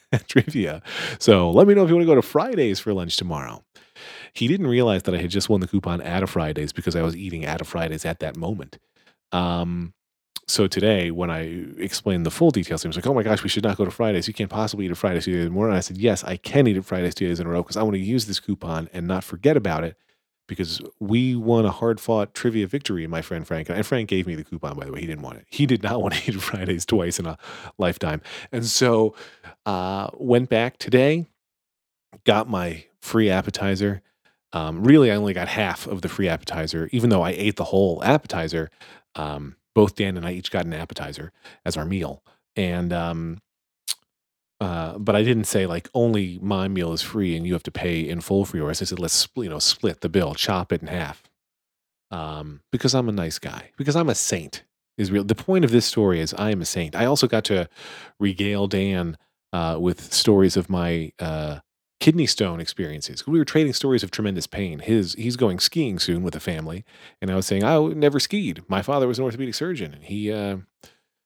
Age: 30-49